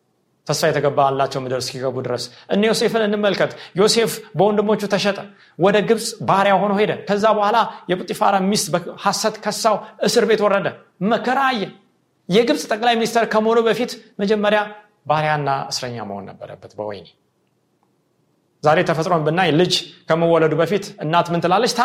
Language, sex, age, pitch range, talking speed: Amharic, male, 30-49, 155-210 Hz, 80 wpm